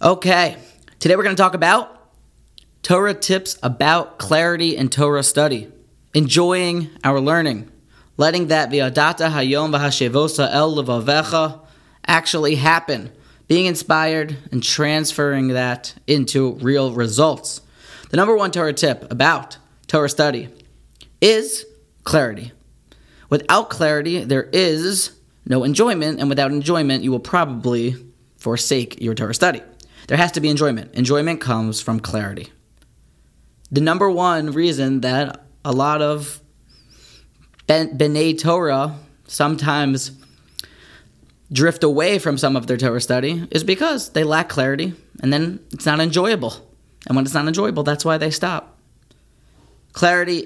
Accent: American